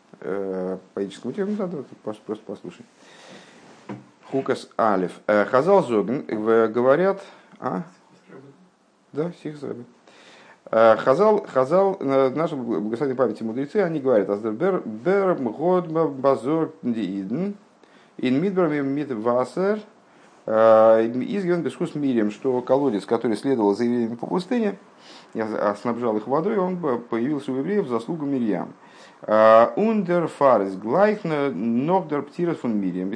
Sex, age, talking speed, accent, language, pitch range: male, 50-69, 85 wpm, native, Russian, 110-180 Hz